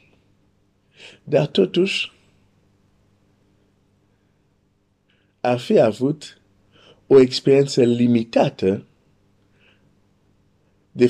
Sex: male